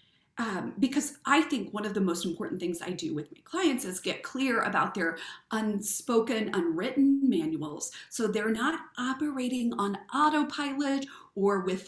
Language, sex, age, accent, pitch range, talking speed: English, female, 40-59, American, 195-275 Hz, 155 wpm